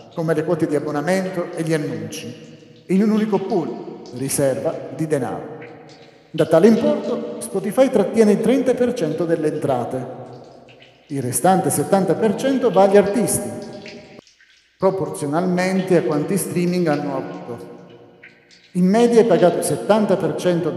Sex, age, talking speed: male, 50-69, 120 wpm